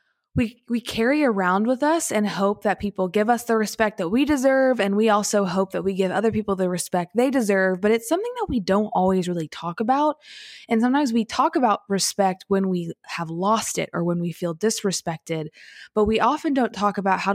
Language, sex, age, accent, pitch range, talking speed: English, female, 20-39, American, 190-250 Hz, 220 wpm